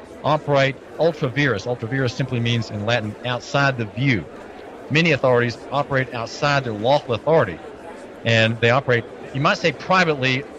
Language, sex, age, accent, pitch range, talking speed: English, male, 40-59, American, 115-140 Hz, 145 wpm